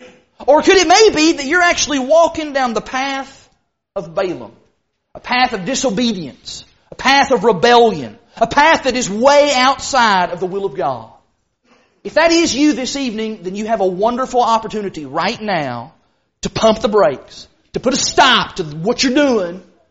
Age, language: 40-59, English